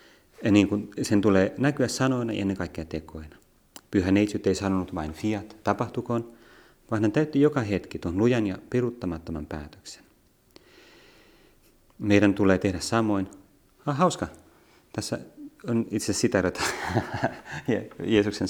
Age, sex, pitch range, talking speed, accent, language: 30-49, male, 95-120 Hz, 140 wpm, native, Finnish